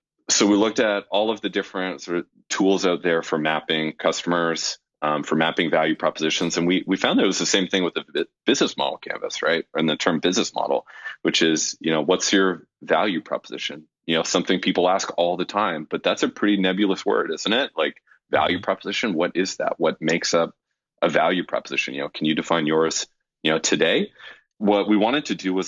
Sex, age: male, 30-49